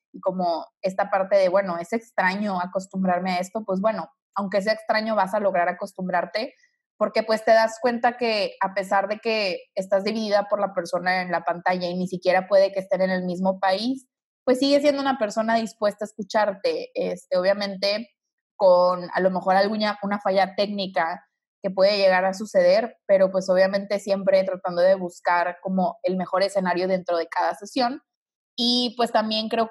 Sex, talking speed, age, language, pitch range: female, 180 wpm, 20-39, Spanish, 185-215 Hz